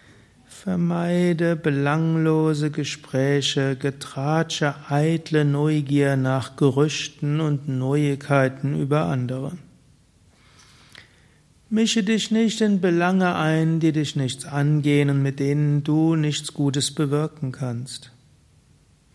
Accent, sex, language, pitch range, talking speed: German, male, German, 140-170 Hz, 95 wpm